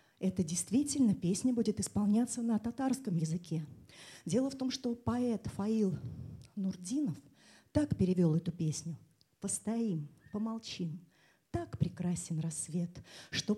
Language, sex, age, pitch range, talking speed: Russian, female, 30-49, 160-230 Hz, 110 wpm